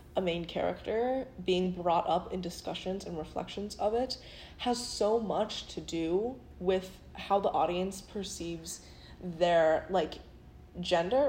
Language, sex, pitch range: English, female, 170-205 Hz